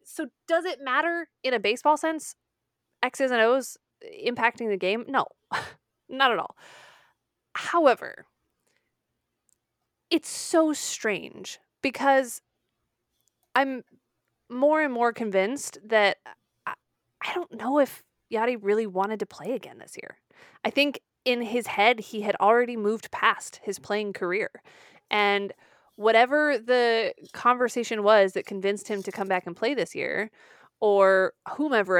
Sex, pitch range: female, 195-275 Hz